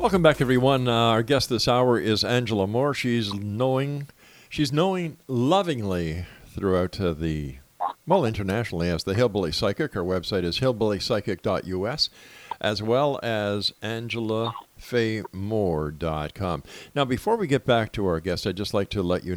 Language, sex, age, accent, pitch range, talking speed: English, male, 50-69, American, 95-135 Hz, 145 wpm